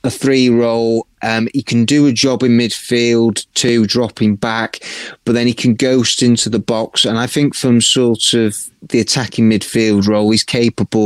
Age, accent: 30-49, British